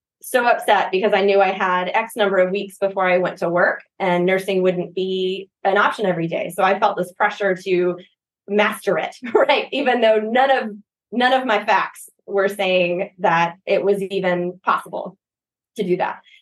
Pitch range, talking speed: 185-215 Hz, 185 wpm